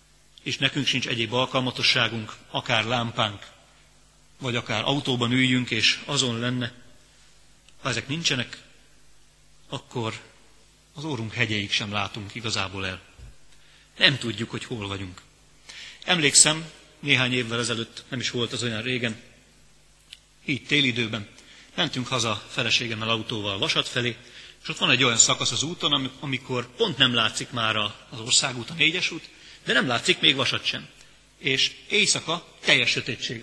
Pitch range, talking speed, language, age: 115-140 Hz, 140 wpm, Hungarian, 40-59